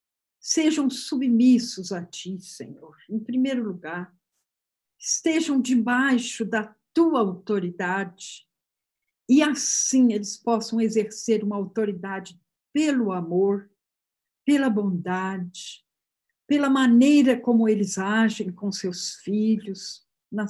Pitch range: 195-245 Hz